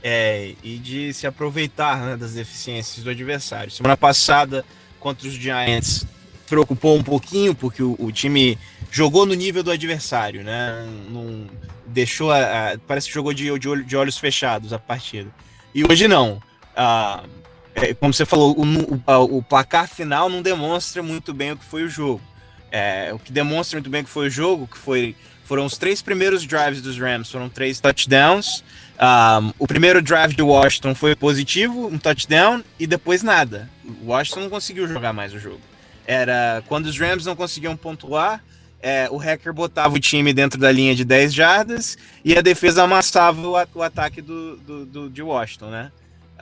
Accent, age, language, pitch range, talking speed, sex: Brazilian, 20-39, English, 120-160 Hz, 175 wpm, male